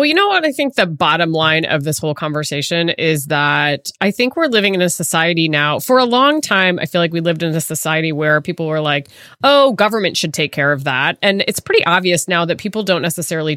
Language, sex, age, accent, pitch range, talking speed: English, female, 20-39, American, 160-215 Hz, 245 wpm